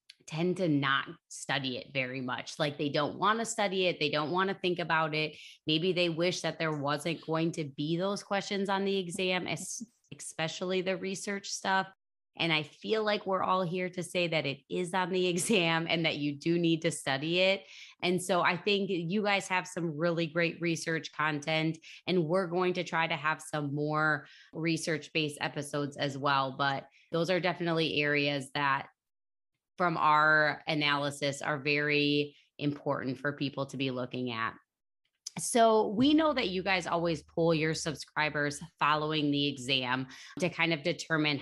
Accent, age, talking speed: American, 20-39, 175 wpm